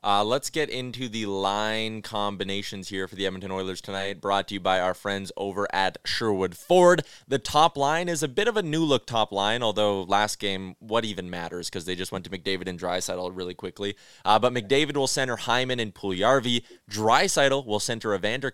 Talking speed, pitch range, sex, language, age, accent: 200 wpm, 100-140 Hz, male, English, 20-39, American